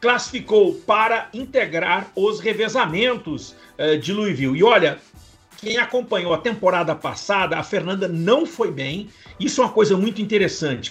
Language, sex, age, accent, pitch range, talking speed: Portuguese, male, 50-69, Brazilian, 165-235 Hz, 145 wpm